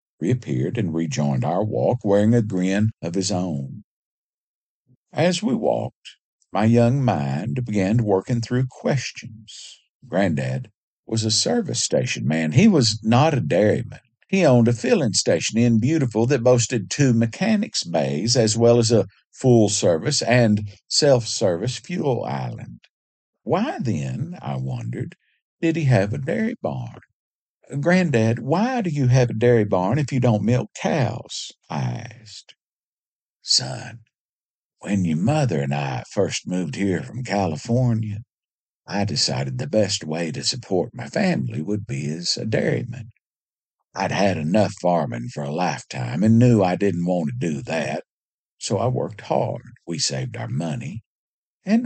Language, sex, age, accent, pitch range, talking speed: English, male, 50-69, American, 90-125 Hz, 145 wpm